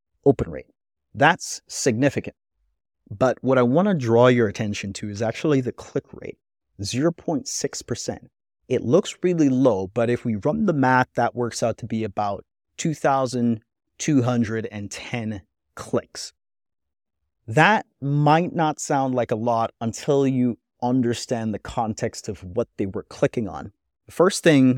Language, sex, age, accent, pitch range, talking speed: English, male, 30-49, American, 105-130 Hz, 140 wpm